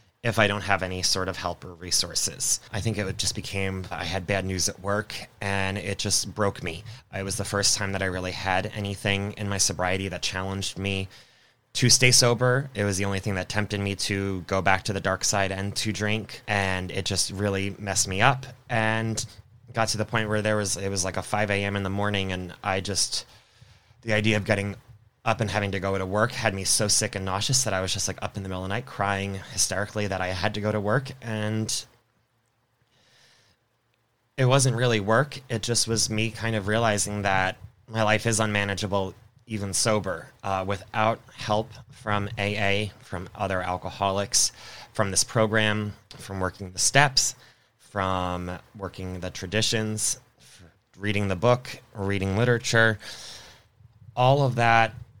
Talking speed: 190 wpm